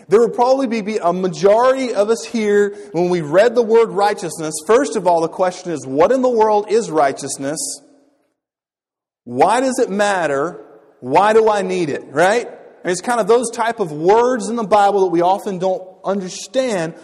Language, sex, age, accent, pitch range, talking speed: English, male, 30-49, American, 175-240 Hz, 185 wpm